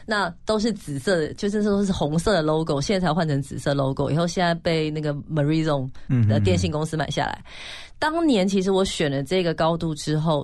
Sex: female